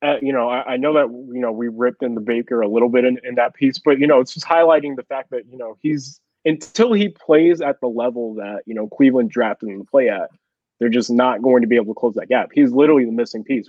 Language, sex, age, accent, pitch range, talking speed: English, male, 20-39, American, 120-140 Hz, 280 wpm